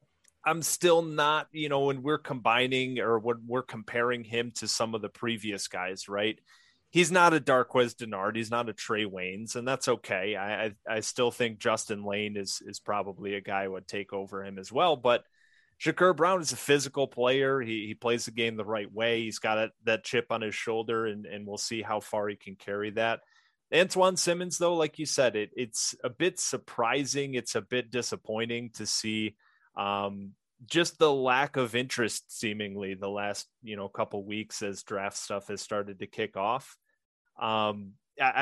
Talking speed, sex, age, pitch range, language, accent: 195 wpm, male, 30-49, 105-135 Hz, English, American